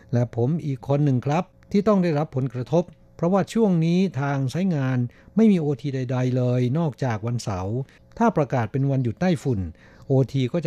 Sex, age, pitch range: male, 60-79, 115-145 Hz